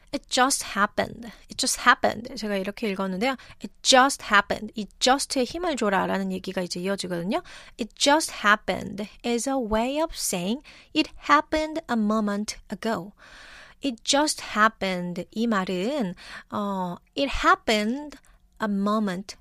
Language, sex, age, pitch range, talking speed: English, female, 30-49, 200-265 Hz, 135 wpm